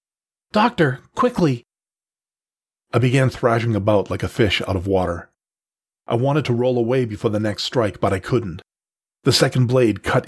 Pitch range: 100-120 Hz